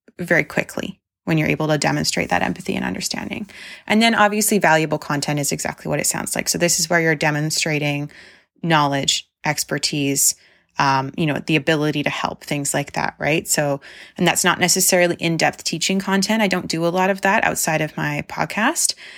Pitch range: 155-190 Hz